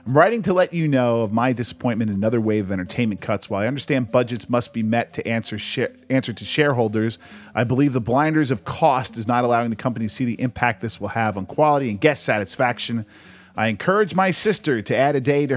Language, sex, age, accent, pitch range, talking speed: English, male, 40-59, American, 110-145 Hz, 225 wpm